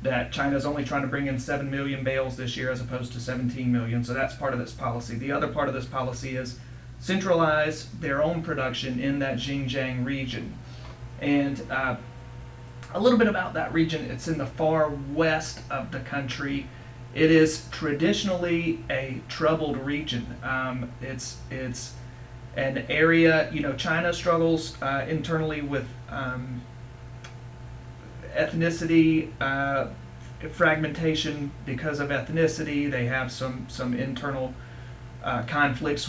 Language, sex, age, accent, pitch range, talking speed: English, male, 30-49, American, 125-150 Hz, 145 wpm